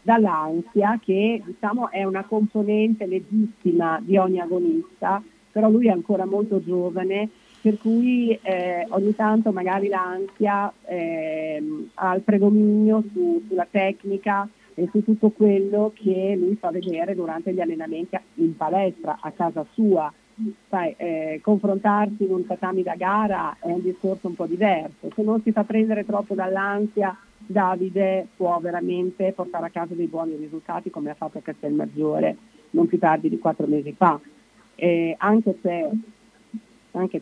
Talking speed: 145 wpm